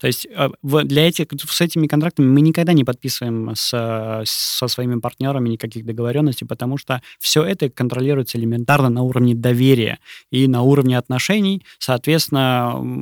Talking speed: 145 wpm